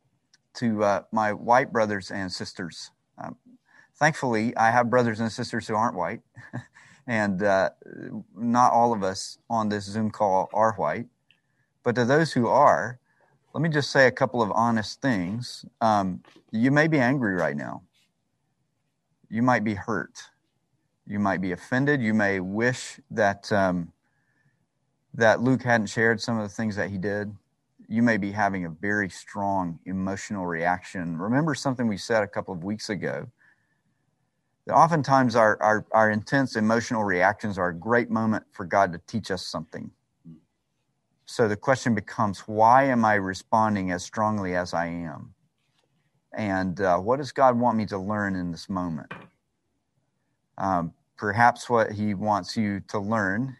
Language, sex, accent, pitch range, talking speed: English, male, American, 95-125 Hz, 160 wpm